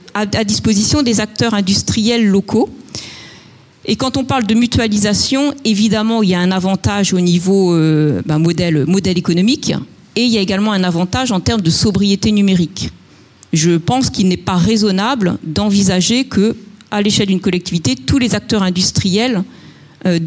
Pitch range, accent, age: 170-215 Hz, French, 40-59